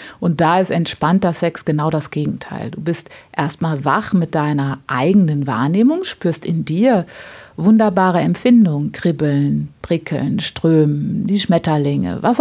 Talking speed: 130 wpm